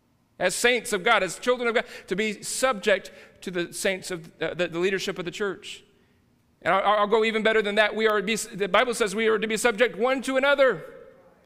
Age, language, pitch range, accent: 40-59, English, 170-220 Hz, American